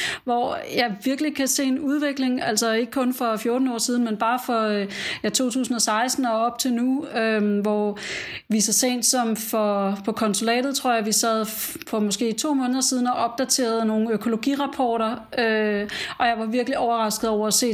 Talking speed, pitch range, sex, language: 185 wpm, 215-245 Hz, female, Danish